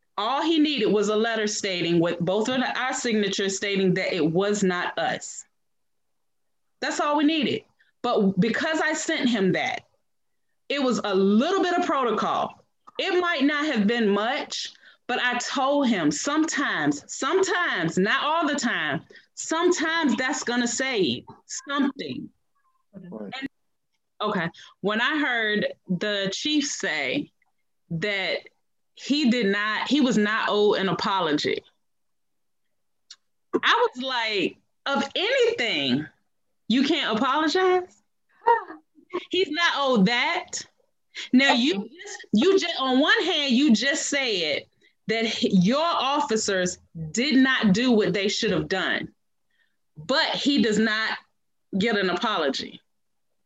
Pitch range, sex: 210-315 Hz, female